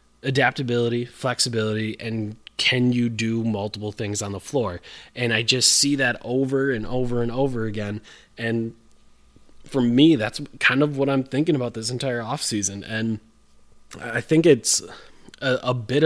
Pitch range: 115-135 Hz